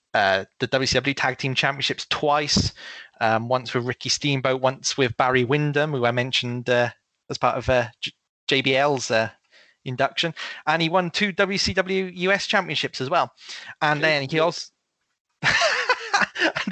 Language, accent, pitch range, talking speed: English, British, 120-155 Hz, 150 wpm